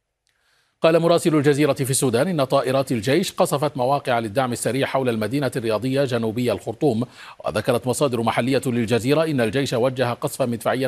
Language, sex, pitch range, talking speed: Arabic, male, 115-135 Hz, 145 wpm